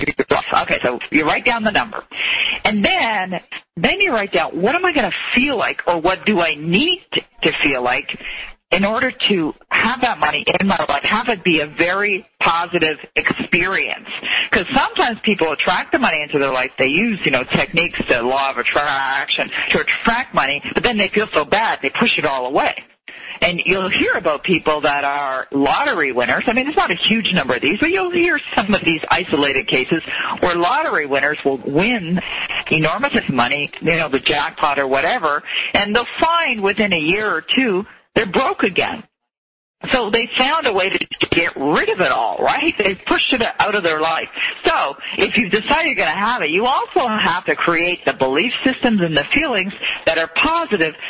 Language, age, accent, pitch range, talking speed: English, 40-59, American, 160-255 Hz, 195 wpm